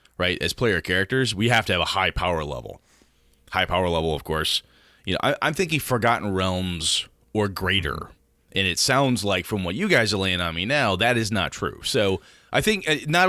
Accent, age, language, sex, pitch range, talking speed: American, 30-49, English, male, 90-125 Hz, 210 wpm